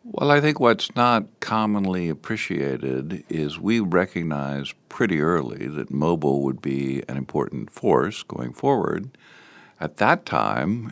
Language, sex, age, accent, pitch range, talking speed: English, male, 60-79, American, 65-80 Hz, 130 wpm